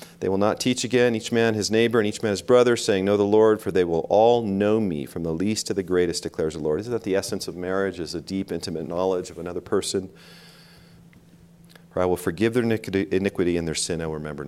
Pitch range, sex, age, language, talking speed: 85-120 Hz, male, 40-59, English, 245 wpm